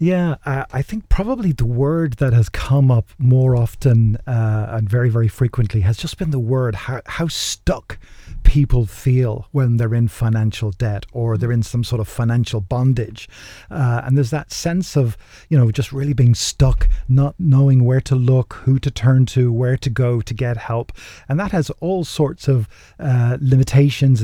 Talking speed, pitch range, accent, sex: 190 wpm, 115-140 Hz, British, male